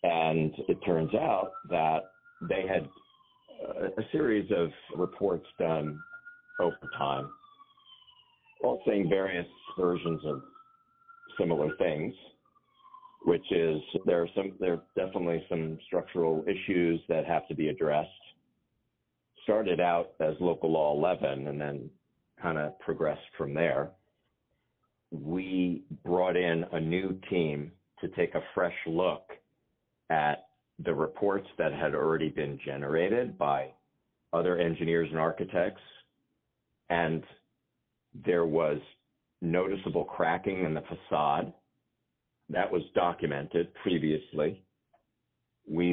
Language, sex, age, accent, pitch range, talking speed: English, male, 50-69, American, 80-100 Hz, 115 wpm